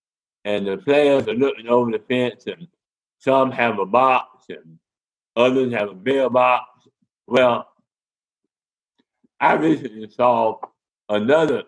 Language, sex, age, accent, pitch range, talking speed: English, male, 60-79, American, 110-140 Hz, 125 wpm